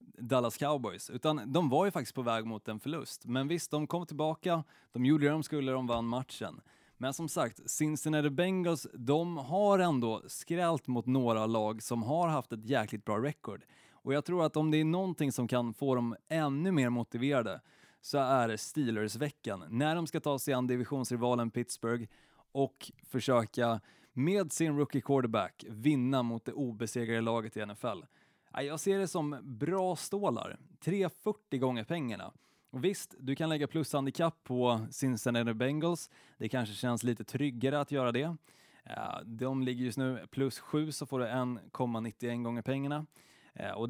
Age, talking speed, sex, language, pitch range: 20-39, 170 wpm, male, Swedish, 120-155 Hz